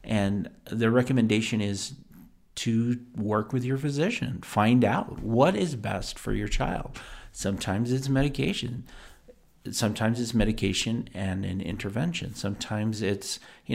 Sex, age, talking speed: male, 40-59, 125 wpm